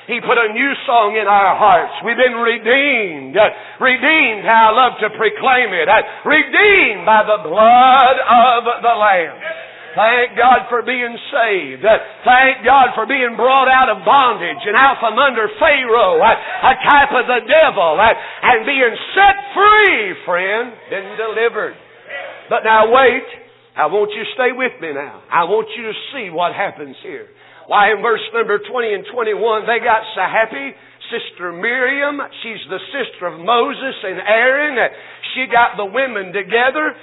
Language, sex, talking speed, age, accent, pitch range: English, male, 160 wpm, 60-79, American, 220-280 Hz